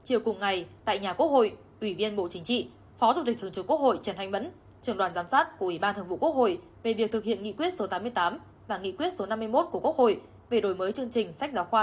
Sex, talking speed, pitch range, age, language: female, 290 wpm, 190-240 Hz, 10-29, Vietnamese